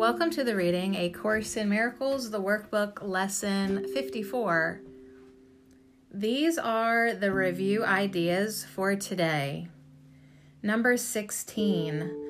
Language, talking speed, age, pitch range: English, 100 wpm, 30-49, 150-215 Hz